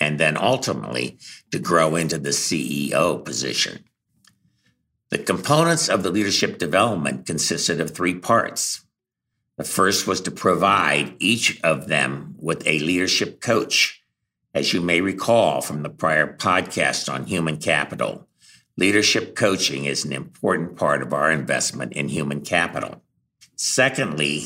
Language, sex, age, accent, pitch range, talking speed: English, male, 60-79, American, 75-100 Hz, 135 wpm